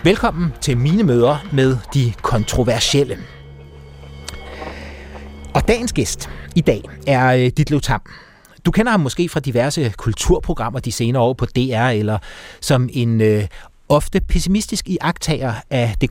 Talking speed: 135 wpm